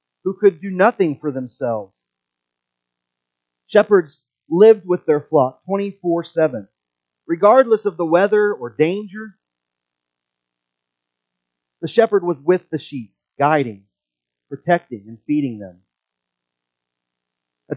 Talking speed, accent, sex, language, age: 100 wpm, American, male, English, 30-49